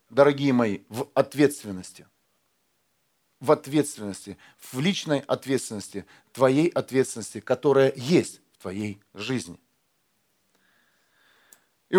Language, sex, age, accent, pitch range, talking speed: Russian, male, 40-59, native, 145-200 Hz, 85 wpm